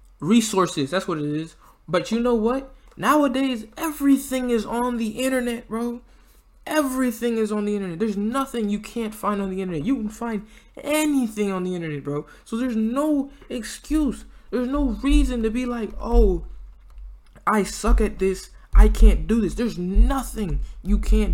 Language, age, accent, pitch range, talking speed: English, 20-39, American, 190-245 Hz, 170 wpm